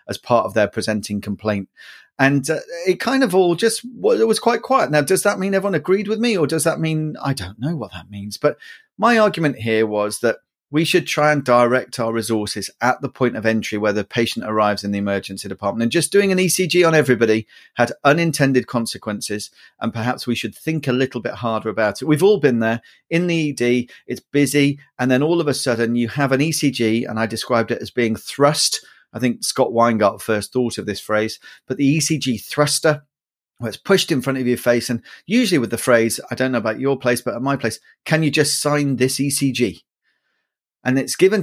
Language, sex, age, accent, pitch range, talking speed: English, male, 40-59, British, 115-150 Hz, 220 wpm